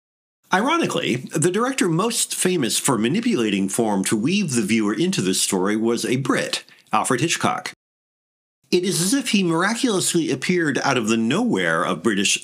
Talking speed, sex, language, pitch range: 160 wpm, male, English, 110-175 Hz